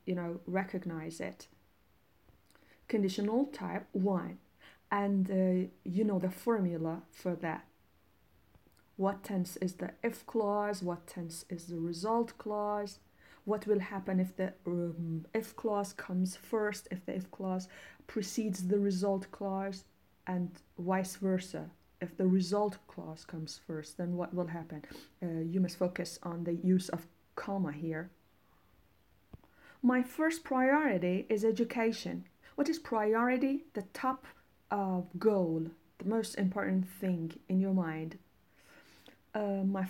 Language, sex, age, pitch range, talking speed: Persian, female, 30-49, 180-225 Hz, 135 wpm